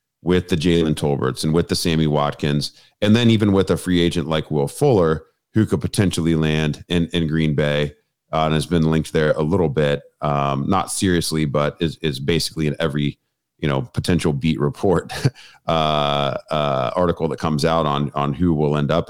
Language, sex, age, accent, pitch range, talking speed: English, male, 30-49, American, 75-90 Hz, 195 wpm